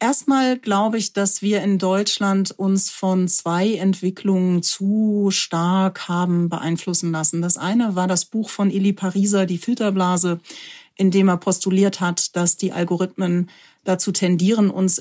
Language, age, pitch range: German, 30-49, 175-200 Hz